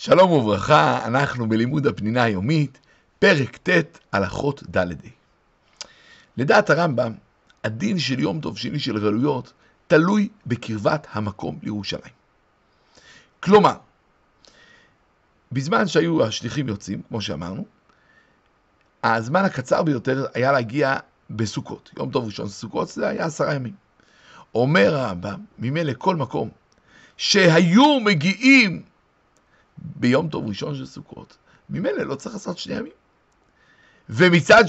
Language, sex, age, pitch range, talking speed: Hebrew, male, 60-79, 115-180 Hz, 110 wpm